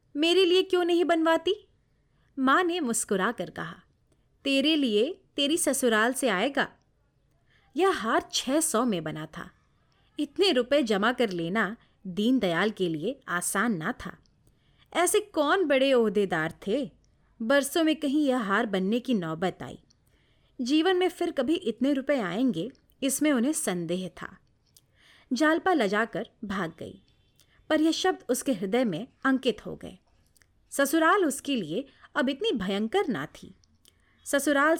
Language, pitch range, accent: Hindi, 215-320 Hz, native